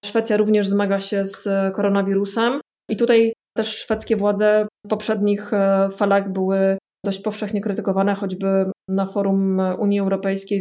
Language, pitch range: Polish, 195-220 Hz